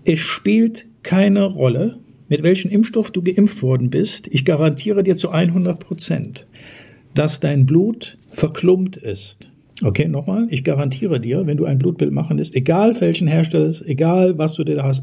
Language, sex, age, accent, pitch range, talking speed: German, male, 50-69, German, 135-180 Hz, 170 wpm